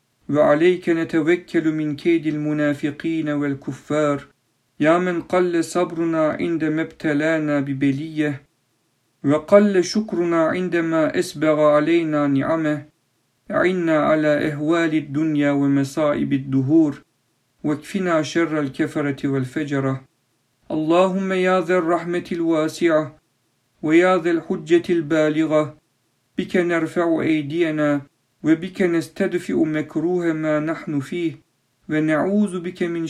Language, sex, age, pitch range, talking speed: Turkish, male, 50-69, 145-170 Hz, 90 wpm